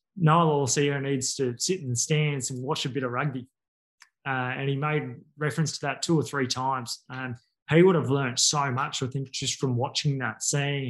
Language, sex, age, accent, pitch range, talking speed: English, male, 20-39, Australian, 130-150 Hz, 220 wpm